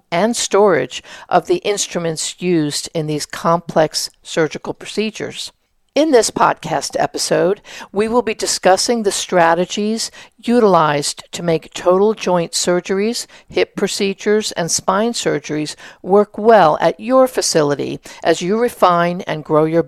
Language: English